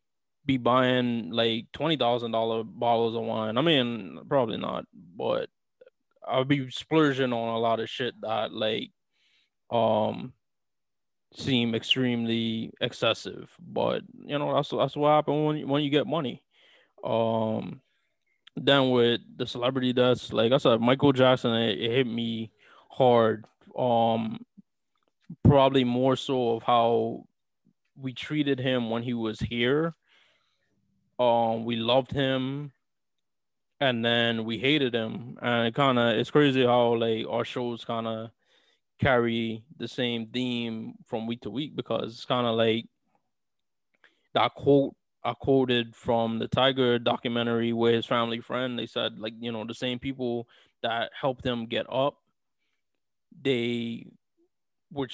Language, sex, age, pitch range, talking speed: English, male, 20-39, 115-130 Hz, 140 wpm